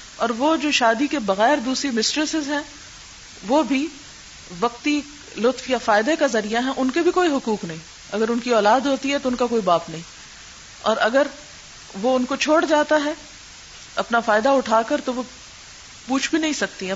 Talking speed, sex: 190 wpm, female